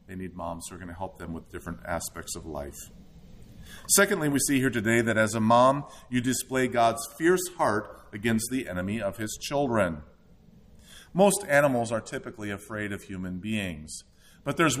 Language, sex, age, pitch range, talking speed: English, male, 40-59, 100-130 Hz, 180 wpm